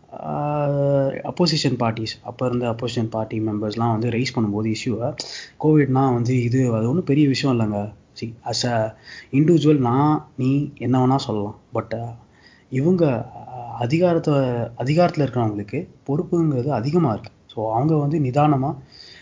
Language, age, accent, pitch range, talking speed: Tamil, 20-39, native, 115-145 Hz, 120 wpm